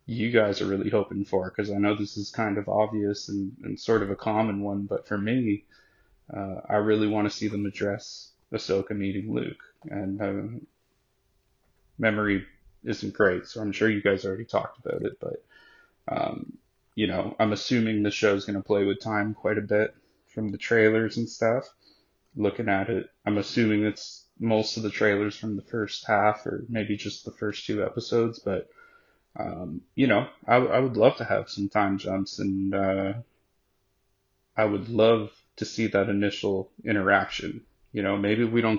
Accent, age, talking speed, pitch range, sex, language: American, 20-39, 185 wpm, 100-110 Hz, male, English